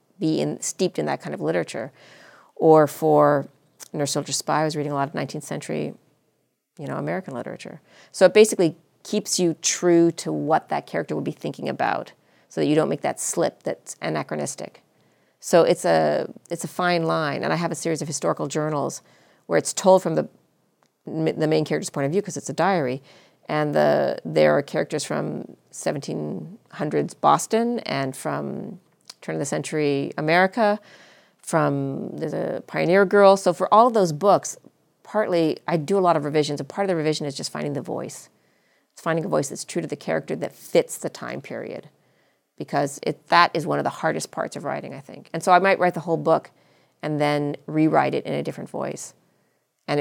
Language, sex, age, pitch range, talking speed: English, female, 40-59, 145-185 Hz, 200 wpm